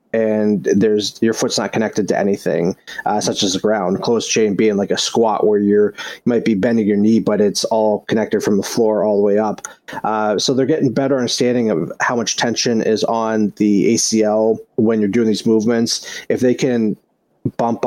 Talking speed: 205 wpm